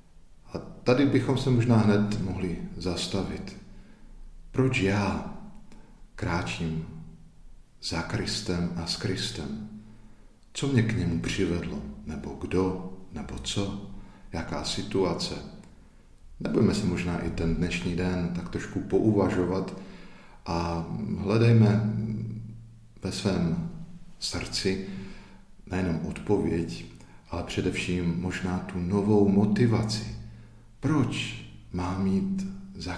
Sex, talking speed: male, 95 wpm